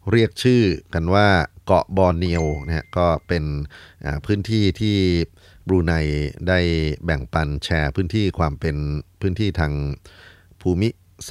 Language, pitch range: Thai, 80-95 Hz